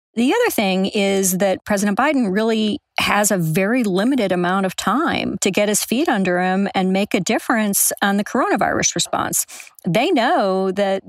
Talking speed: 175 wpm